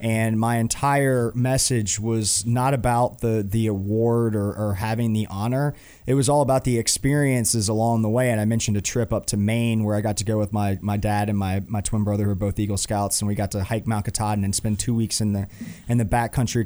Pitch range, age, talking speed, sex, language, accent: 105-130 Hz, 30-49, 240 wpm, male, English, American